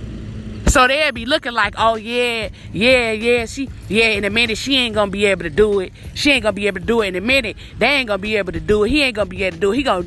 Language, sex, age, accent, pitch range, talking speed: English, female, 20-39, American, 205-295 Hz, 305 wpm